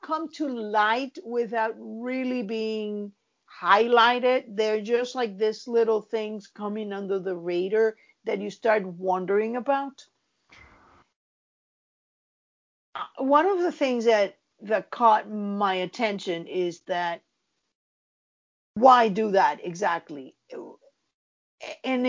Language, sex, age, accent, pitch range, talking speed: English, female, 50-69, American, 210-270 Hz, 105 wpm